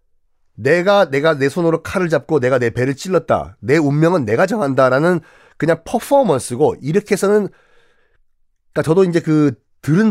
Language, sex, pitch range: Korean, male, 125-195 Hz